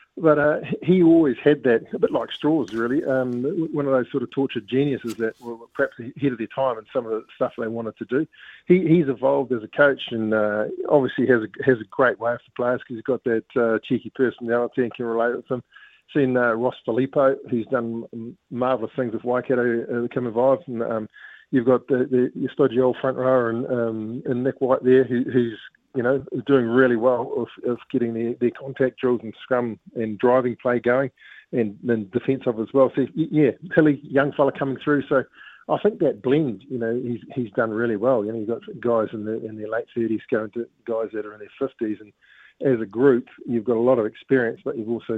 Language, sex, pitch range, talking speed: English, male, 115-135 Hz, 225 wpm